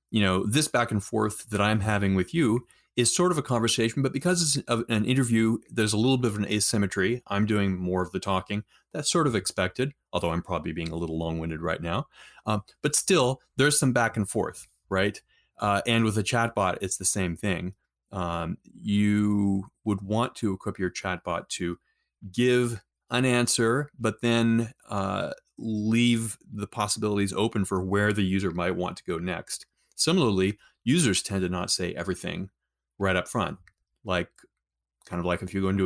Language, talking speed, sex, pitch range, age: English, 185 wpm, male, 95-115 Hz, 30-49